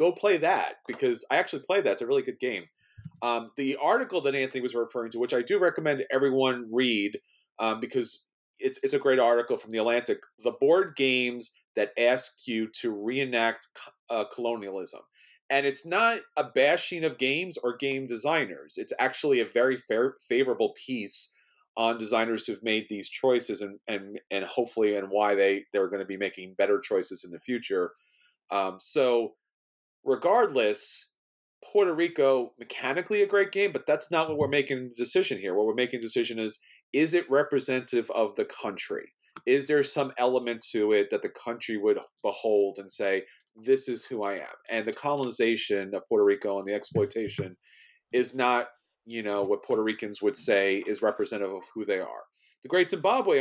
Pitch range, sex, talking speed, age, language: 110-185 Hz, male, 180 wpm, 30-49, English